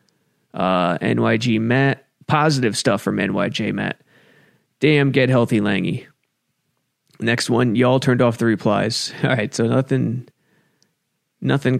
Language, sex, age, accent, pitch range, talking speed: English, male, 20-39, American, 110-130 Hz, 120 wpm